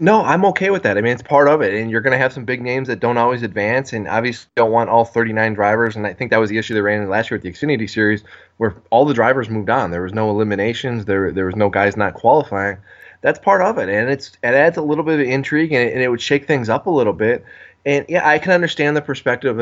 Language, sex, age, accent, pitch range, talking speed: English, male, 20-39, American, 110-145 Hz, 285 wpm